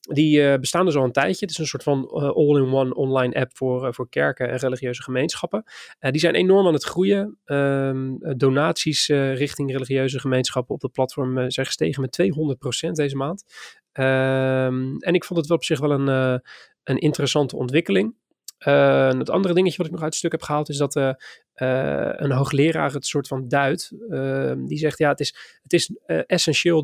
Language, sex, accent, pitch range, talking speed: Dutch, male, Dutch, 130-150 Hz, 205 wpm